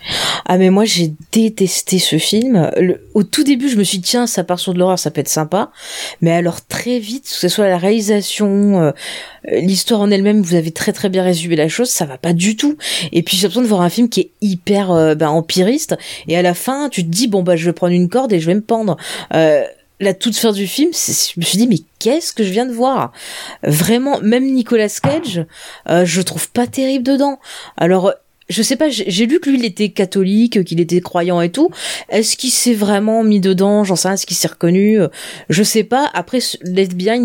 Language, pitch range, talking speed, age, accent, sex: French, 175-230 Hz, 235 wpm, 20-39, French, female